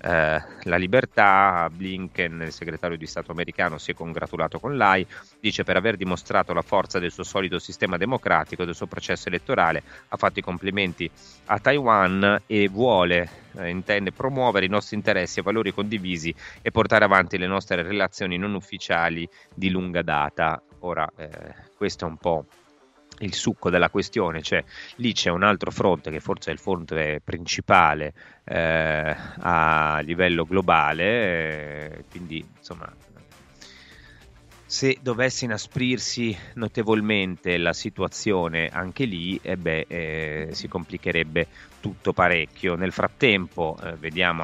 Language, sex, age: Italian, male, 30-49